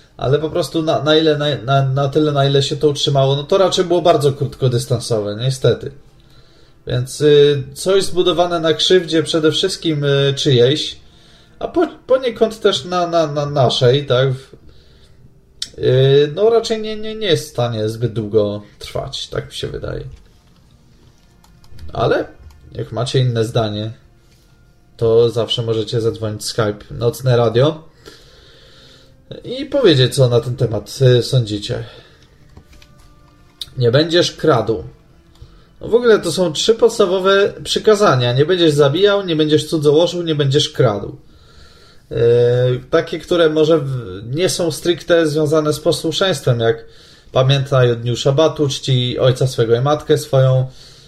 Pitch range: 120-165 Hz